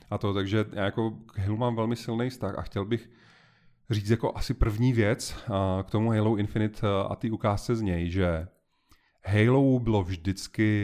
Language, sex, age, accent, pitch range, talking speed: Czech, male, 30-49, native, 90-110 Hz, 175 wpm